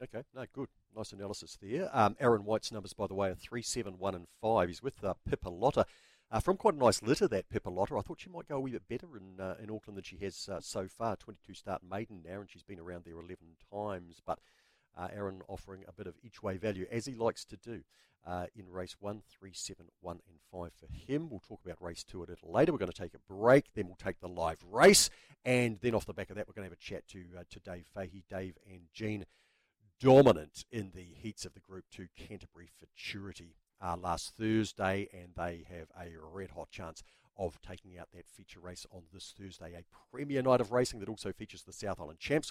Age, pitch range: 50-69, 90-110 Hz